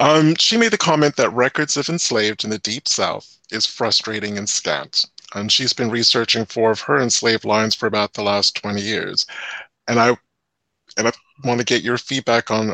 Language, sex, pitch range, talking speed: English, male, 110-145 Hz, 200 wpm